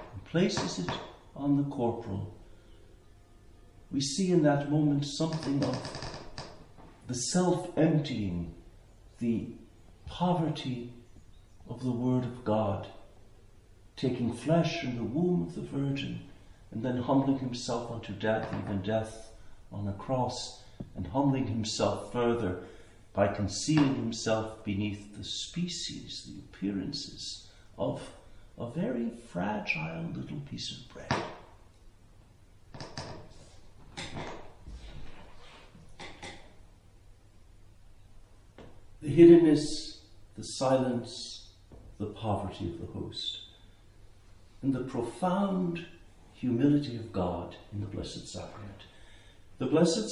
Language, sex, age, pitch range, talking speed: English, male, 50-69, 100-125 Hz, 95 wpm